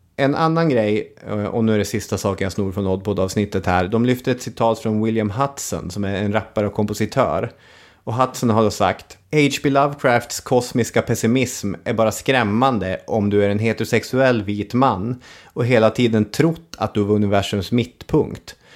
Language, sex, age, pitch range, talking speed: English, male, 30-49, 100-120 Hz, 180 wpm